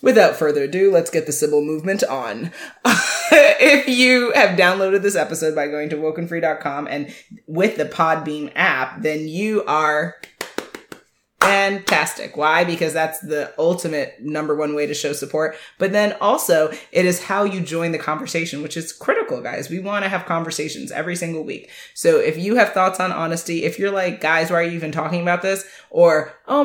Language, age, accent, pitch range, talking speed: English, 20-39, American, 155-210 Hz, 180 wpm